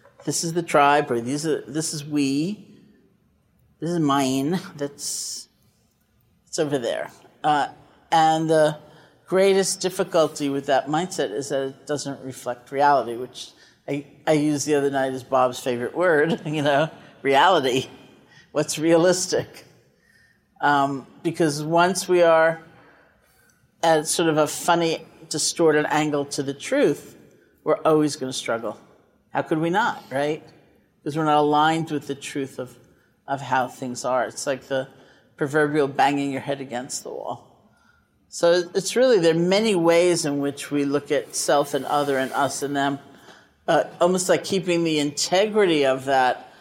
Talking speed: 150 wpm